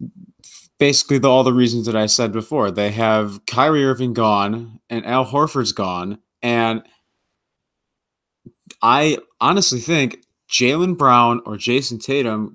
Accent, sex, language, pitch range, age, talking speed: American, male, English, 110-130 Hz, 30-49, 130 wpm